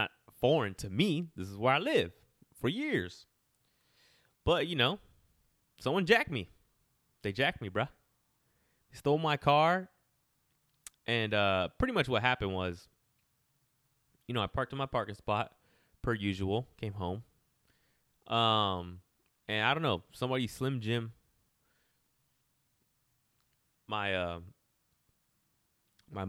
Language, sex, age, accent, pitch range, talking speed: English, male, 20-39, American, 95-125 Hz, 120 wpm